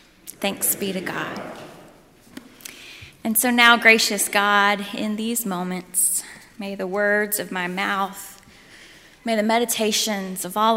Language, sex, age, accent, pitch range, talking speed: English, female, 10-29, American, 200-250 Hz, 130 wpm